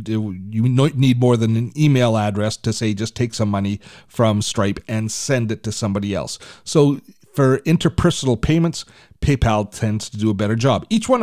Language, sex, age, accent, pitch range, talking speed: English, male, 40-59, American, 110-135 Hz, 180 wpm